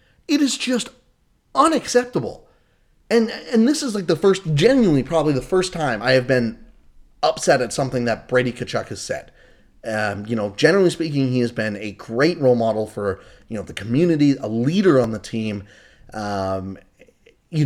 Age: 30-49